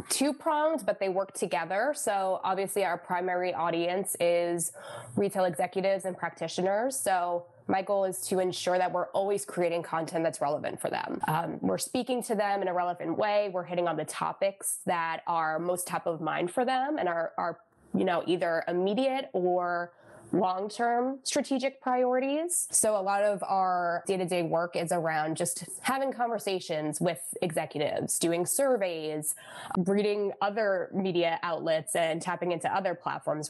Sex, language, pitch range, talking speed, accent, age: female, English, 170-205 Hz, 160 wpm, American, 20-39